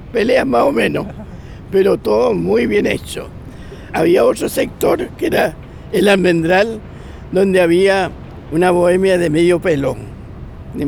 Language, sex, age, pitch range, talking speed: French, male, 60-79, 165-215 Hz, 130 wpm